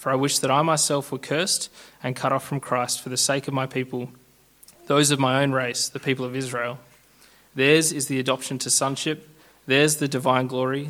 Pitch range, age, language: 125-140 Hz, 20-39, English